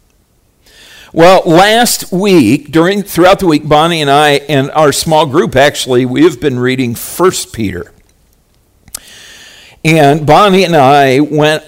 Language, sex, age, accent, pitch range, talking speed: English, male, 50-69, American, 120-160 Hz, 135 wpm